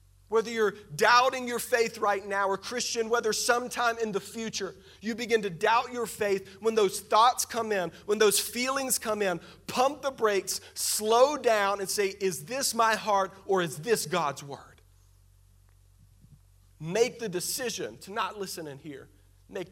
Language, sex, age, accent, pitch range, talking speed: English, male, 40-59, American, 180-240 Hz, 165 wpm